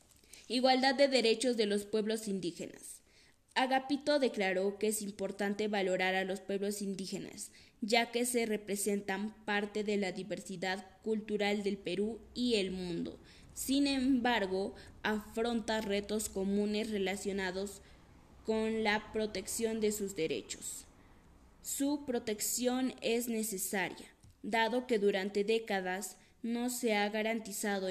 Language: Spanish